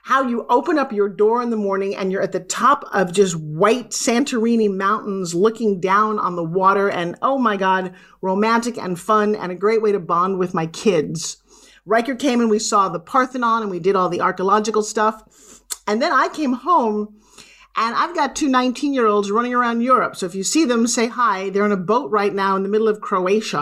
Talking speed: 215 wpm